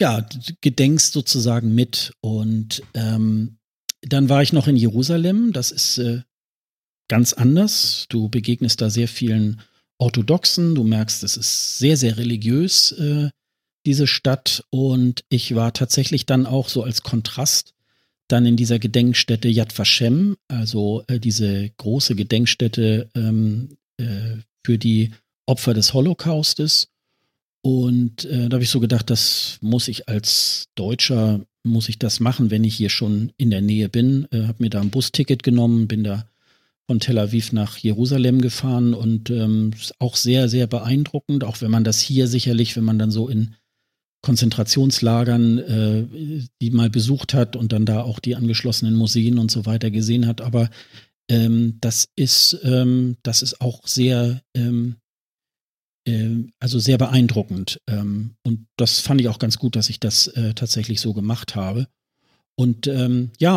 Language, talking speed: German, 155 wpm